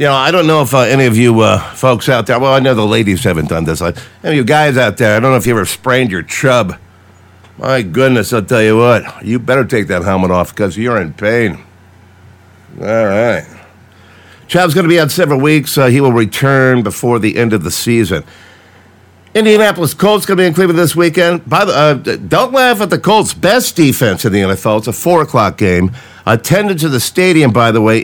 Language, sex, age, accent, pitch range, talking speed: English, male, 50-69, American, 105-160 Hz, 225 wpm